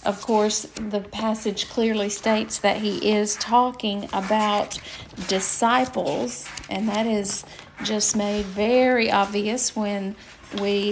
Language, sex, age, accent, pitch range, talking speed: English, female, 40-59, American, 205-235 Hz, 115 wpm